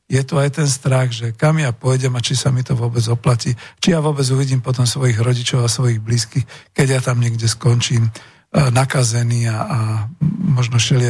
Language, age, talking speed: Slovak, 50-69, 195 wpm